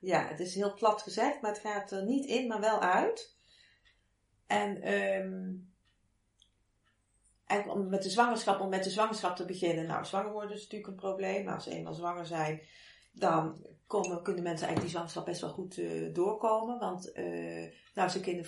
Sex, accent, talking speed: female, Dutch, 190 wpm